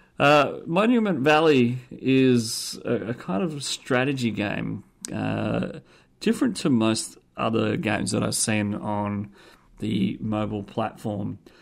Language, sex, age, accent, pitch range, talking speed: English, male, 40-59, Australian, 105-145 Hz, 120 wpm